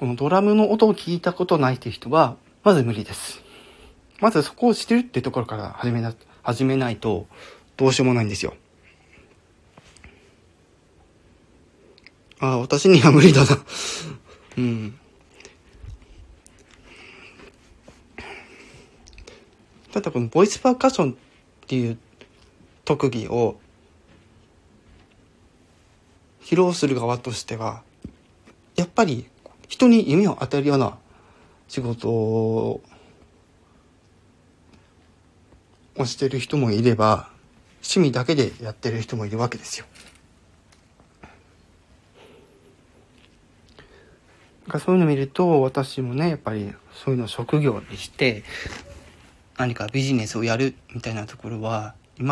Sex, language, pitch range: male, Japanese, 95-135 Hz